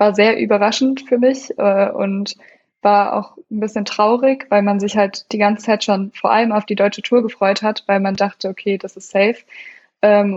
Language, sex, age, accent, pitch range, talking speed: German, female, 20-39, German, 195-215 Hz, 210 wpm